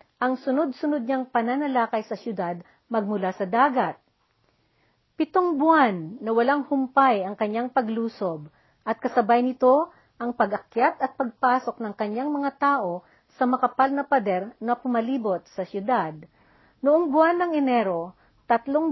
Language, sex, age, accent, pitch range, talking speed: Filipino, female, 50-69, native, 215-270 Hz, 130 wpm